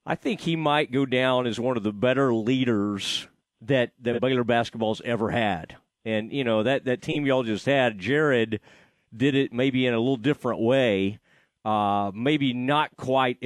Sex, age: male, 40-59